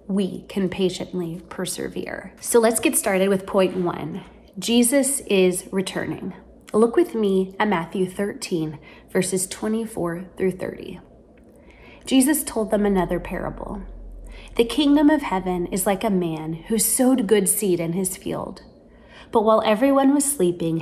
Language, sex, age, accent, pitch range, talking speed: English, female, 30-49, American, 180-245 Hz, 140 wpm